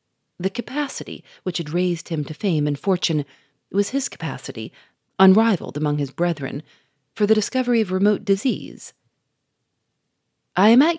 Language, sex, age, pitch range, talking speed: English, female, 40-59, 150-215 Hz, 140 wpm